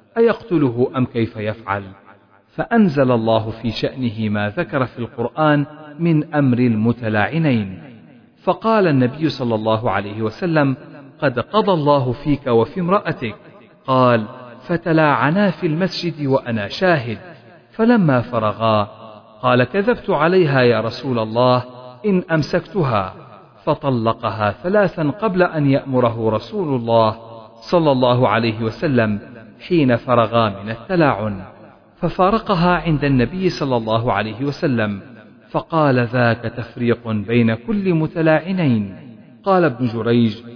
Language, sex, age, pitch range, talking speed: Arabic, male, 50-69, 115-155 Hz, 110 wpm